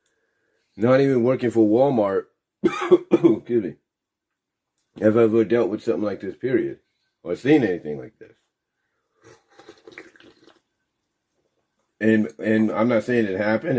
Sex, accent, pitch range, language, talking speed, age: male, American, 110-140 Hz, English, 120 wpm, 40-59